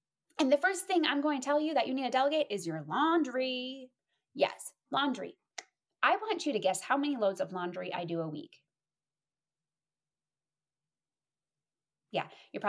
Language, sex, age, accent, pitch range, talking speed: English, female, 20-39, American, 185-285 Hz, 165 wpm